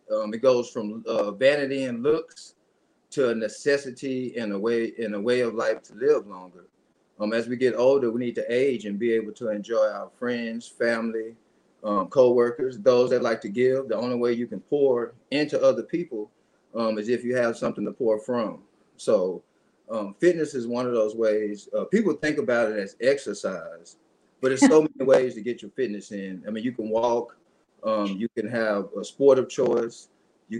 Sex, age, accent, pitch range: male, 30-49, American, 115-155 Hz